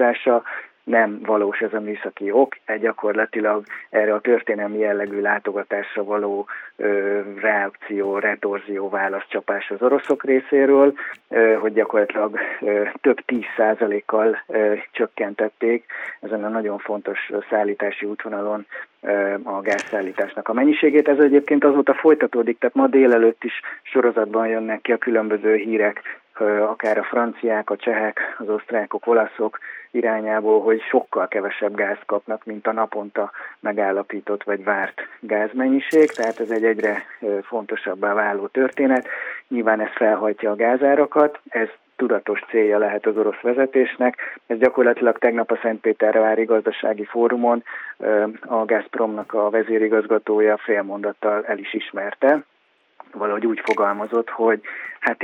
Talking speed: 120 wpm